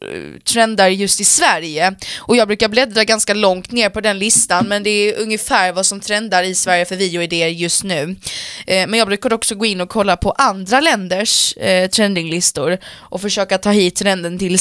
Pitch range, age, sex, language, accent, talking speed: 180-220 Hz, 20-39, female, Swedish, native, 185 wpm